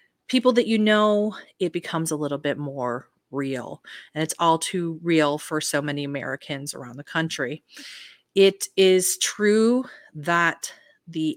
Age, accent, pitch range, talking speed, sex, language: 30-49, American, 150-175 Hz, 150 wpm, female, English